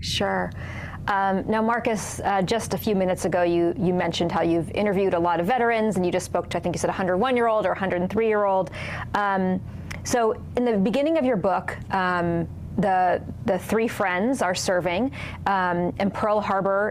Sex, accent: female, American